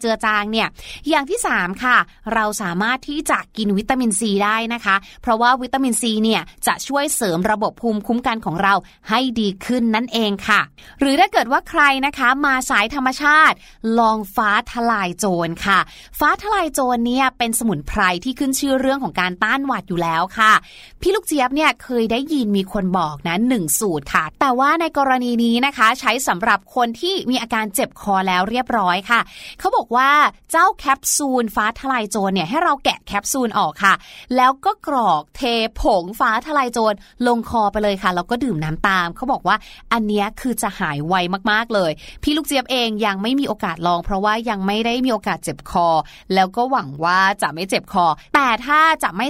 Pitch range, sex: 200-265 Hz, female